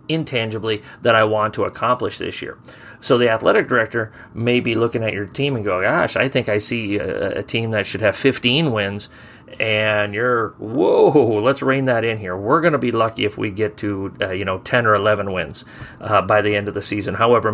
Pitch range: 110-130 Hz